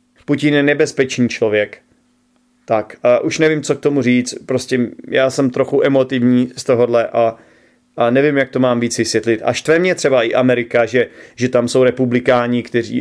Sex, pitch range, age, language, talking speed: male, 120-140 Hz, 30-49, Czech, 180 wpm